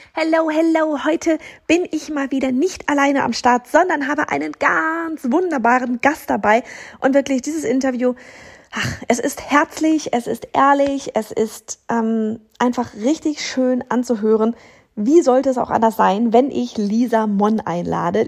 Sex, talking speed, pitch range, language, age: female, 150 wpm, 230-275 Hz, German, 30-49